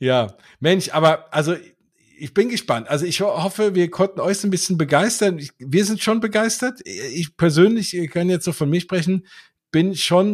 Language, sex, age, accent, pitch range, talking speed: German, male, 50-69, German, 125-165 Hz, 190 wpm